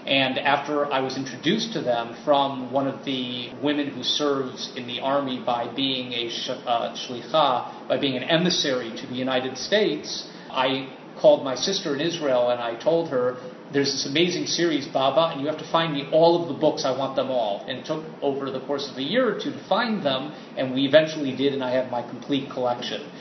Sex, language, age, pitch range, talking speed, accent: male, English, 40-59, 135-170 Hz, 215 wpm, American